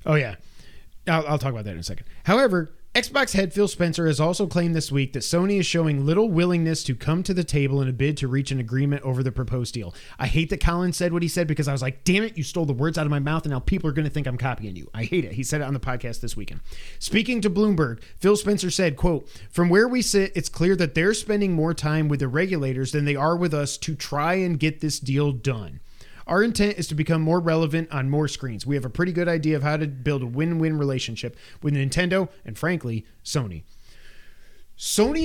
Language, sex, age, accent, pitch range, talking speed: English, male, 30-49, American, 115-175 Hz, 250 wpm